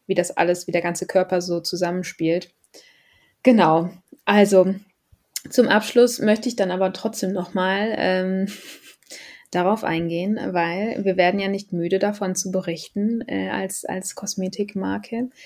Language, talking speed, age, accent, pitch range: German, 130 wpm, 20-39, German, 180-210 Hz